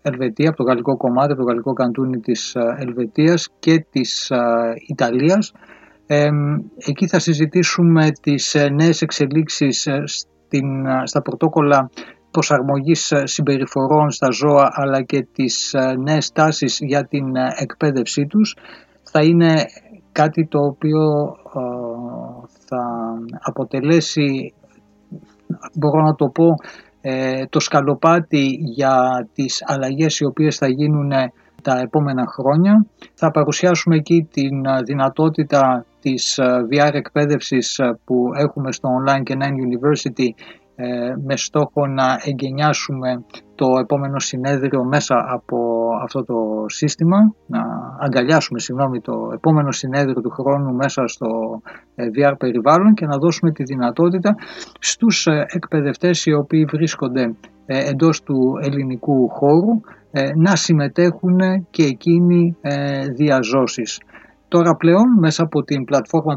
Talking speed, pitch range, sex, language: 110 wpm, 130-155 Hz, male, Greek